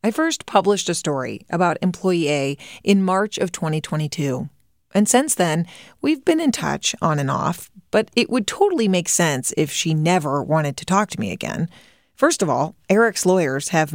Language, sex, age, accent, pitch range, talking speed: English, female, 30-49, American, 160-225 Hz, 185 wpm